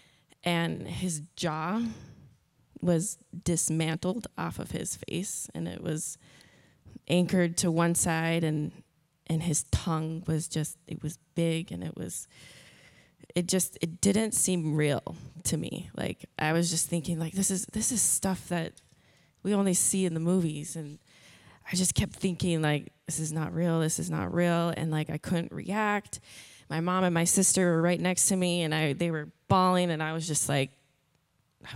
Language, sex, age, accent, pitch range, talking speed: English, female, 20-39, American, 155-180 Hz, 180 wpm